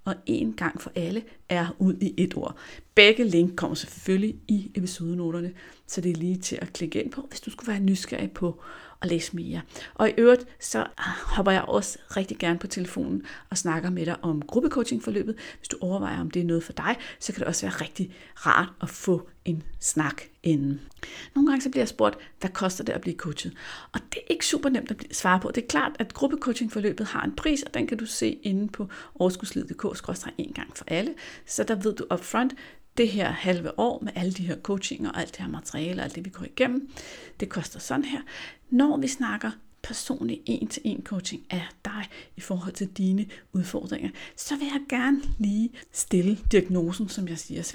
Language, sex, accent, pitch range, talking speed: Danish, female, native, 180-255 Hz, 210 wpm